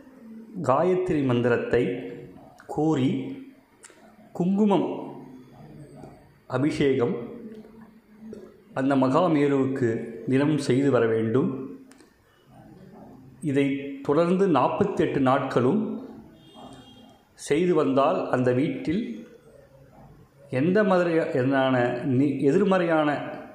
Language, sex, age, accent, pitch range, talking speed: Tamil, male, 30-49, native, 130-180 Hz, 60 wpm